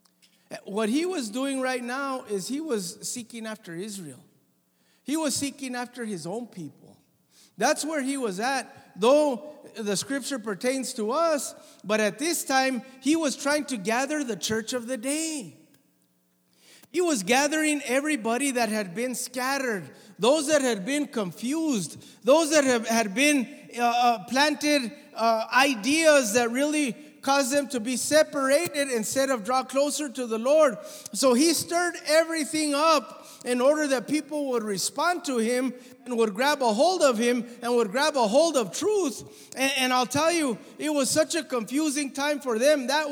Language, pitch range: English, 230-290 Hz